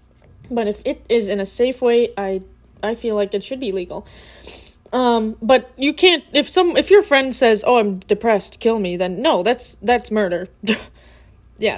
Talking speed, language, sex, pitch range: 190 wpm, English, female, 200-270 Hz